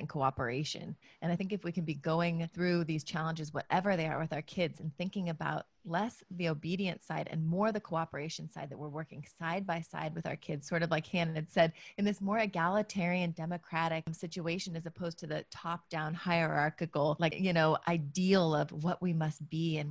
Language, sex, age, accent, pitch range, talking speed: English, female, 30-49, American, 160-190 Hz, 200 wpm